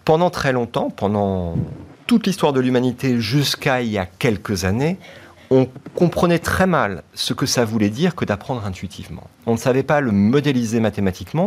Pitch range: 100-140 Hz